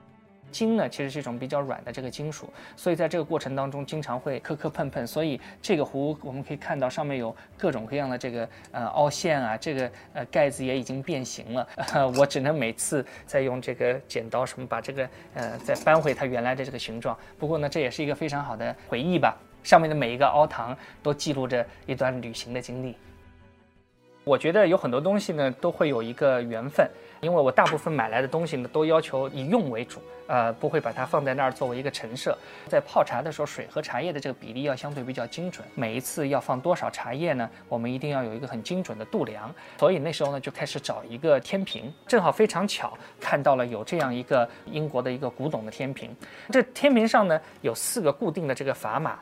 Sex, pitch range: male, 125-160 Hz